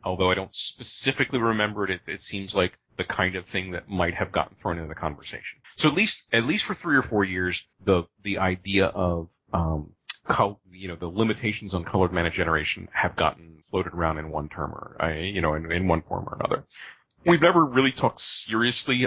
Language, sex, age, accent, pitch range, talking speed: English, male, 40-59, American, 90-115 Hz, 215 wpm